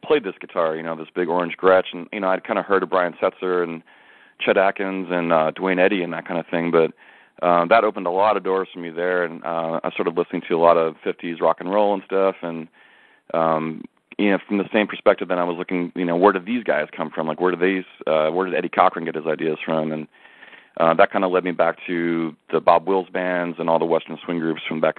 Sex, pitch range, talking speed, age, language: male, 80-95 Hz, 270 wpm, 30-49, English